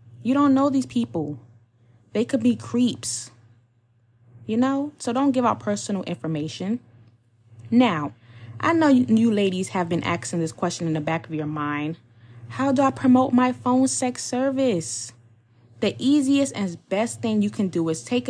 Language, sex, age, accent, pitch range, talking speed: English, female, 20-39, American, 135-220 Hz, 165 wpm